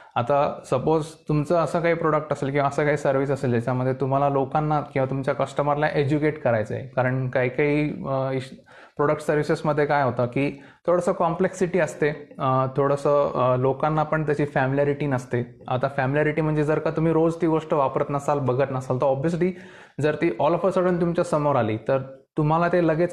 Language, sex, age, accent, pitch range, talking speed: Marathi, male, 20-39, native, 130-160 Hz, 130 wpm